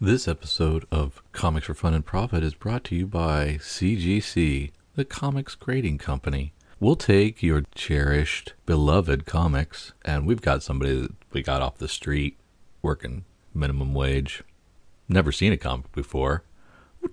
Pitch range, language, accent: 75-95 Hz, English, American